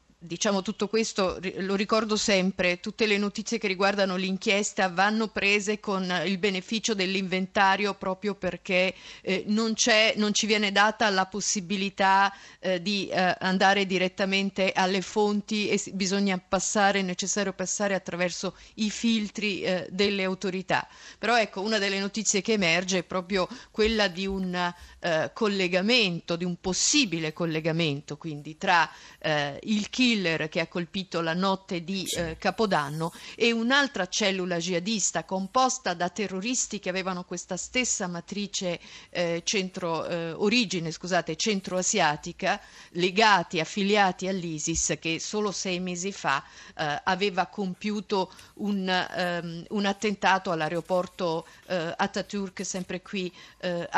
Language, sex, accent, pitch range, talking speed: Italian, female, native, 180-210 Hz, 125 wpm